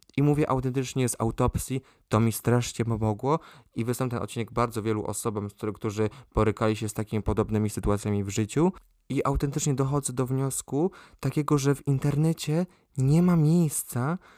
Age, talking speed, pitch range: 20-39, 155 wpm, 120-140 Hz